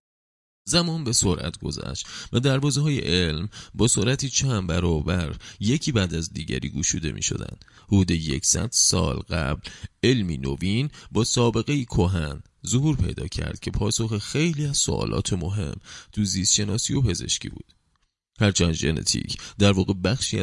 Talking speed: 140 wpm